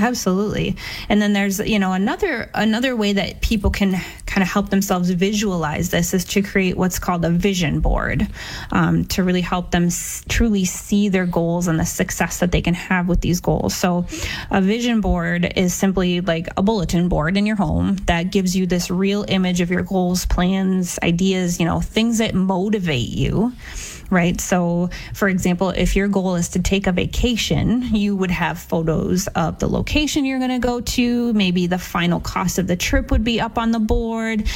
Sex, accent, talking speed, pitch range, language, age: female, American, 195 wpm, 180-215 Hz, English, 20-39